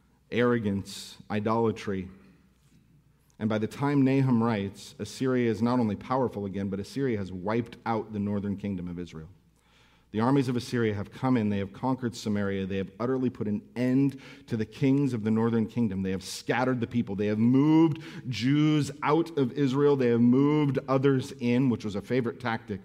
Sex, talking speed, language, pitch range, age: male, 185 wpm, English, 100-125 Hz, 50-69